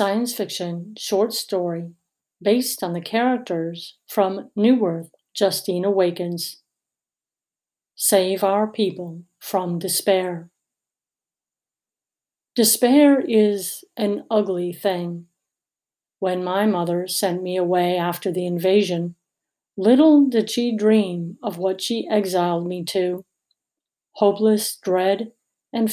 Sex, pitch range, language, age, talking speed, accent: female, 180-220 Hz, English, 50-69, 105 wpm, American